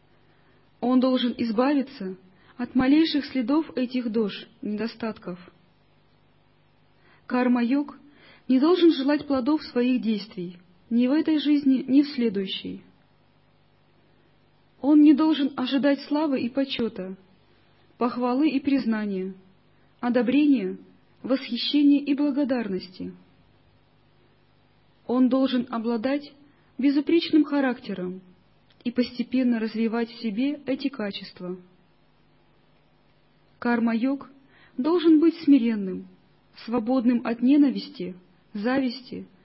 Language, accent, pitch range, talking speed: Russian, native, 225-280 Hz, 85 wpm